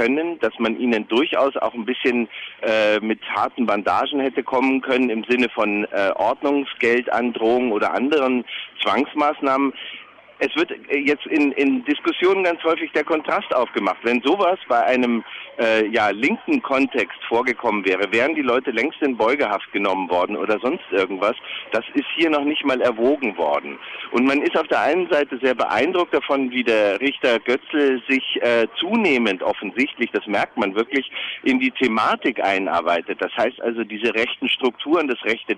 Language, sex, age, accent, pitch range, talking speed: German, male, 40-59, German, 120-160 Hz, 160 wpm